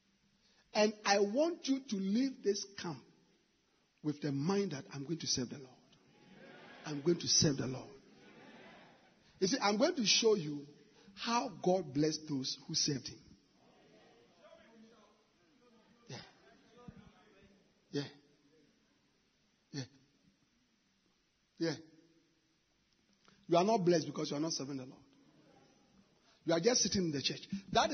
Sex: male